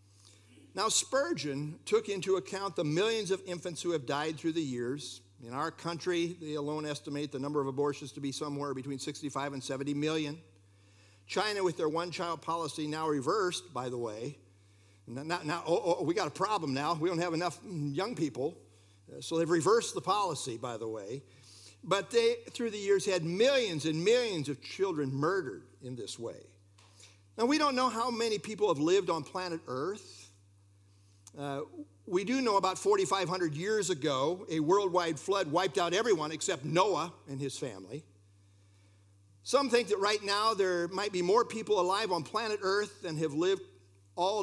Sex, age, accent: male, 60-79, American